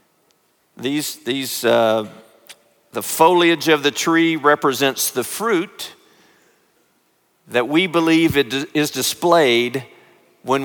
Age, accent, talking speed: 50-69, American, 100 wpm